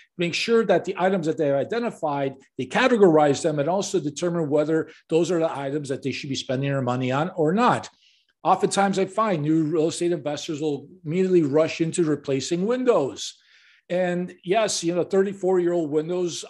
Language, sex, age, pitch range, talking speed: English, male, 50-69, 145-180 Hz, 185 wpm